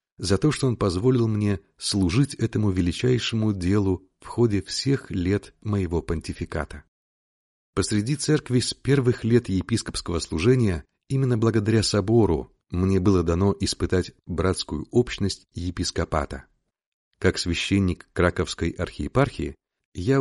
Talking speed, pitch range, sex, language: 115 wpm, 85-115 Hz, male, Russian